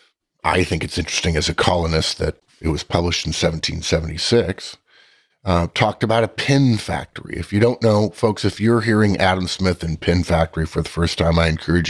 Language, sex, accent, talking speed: English, male, American, 190 wpm